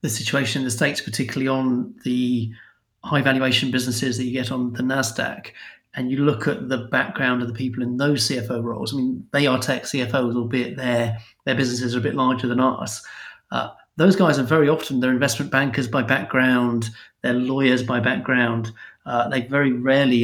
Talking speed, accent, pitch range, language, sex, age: 195 wpm, British, 120-135 Hz, English, male, 40-59